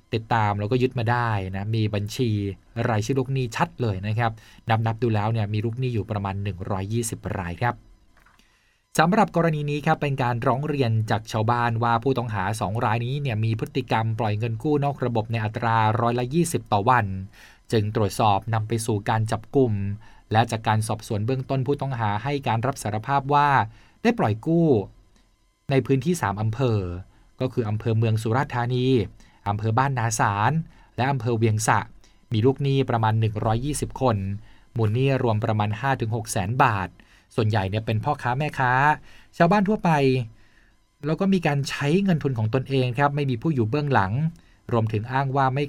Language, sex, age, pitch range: Thai, male, 20-39, 110-135 Hz